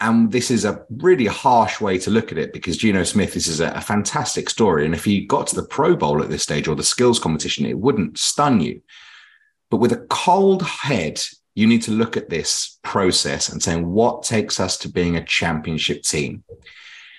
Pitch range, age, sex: 85-115 Hz, 30-49, male